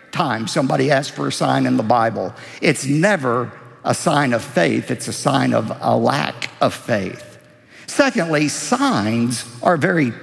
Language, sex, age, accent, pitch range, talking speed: English, male, 50-69, American, 130-180 Hz, 165 wpm